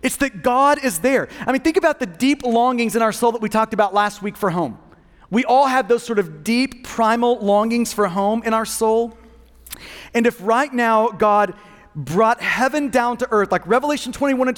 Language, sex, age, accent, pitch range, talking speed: English, male, 30-49, American, 215-275 Hz, 210 wpm